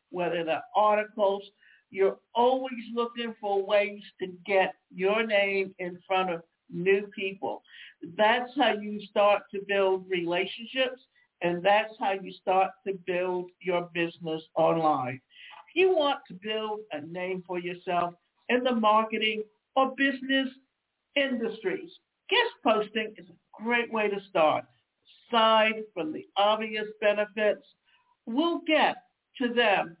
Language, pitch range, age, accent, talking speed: English, 195-235 Hz, 60-79, American, 130 wpm